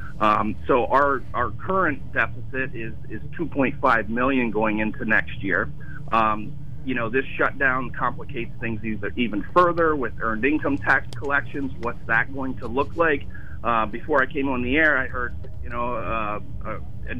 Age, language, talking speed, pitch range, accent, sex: 40-59, English, 170 wpm, 110-140 Hz, American, male